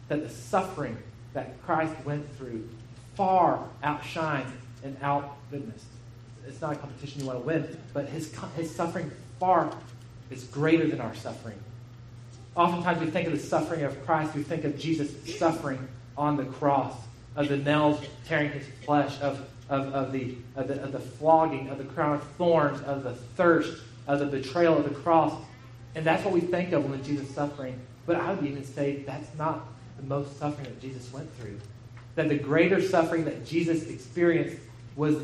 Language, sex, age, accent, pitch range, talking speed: English, male, 30-49, American, 125-160 Hz, 180 wpm